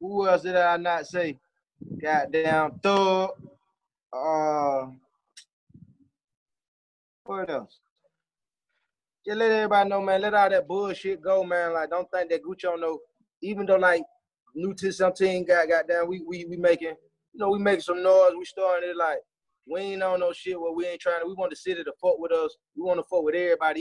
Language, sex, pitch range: English, male, 175-195 Hz